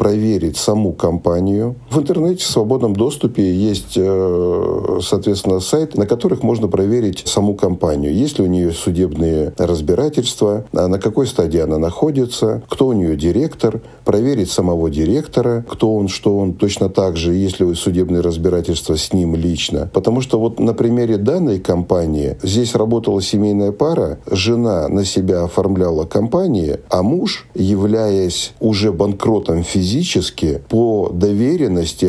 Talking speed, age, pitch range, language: 140 wpm, 40-59, 90-115 Hz, Russian